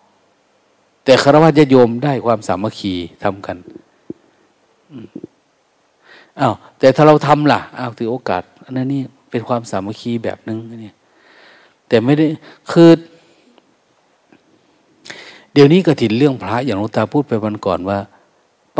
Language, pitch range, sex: Thai, 110-150 Hz, male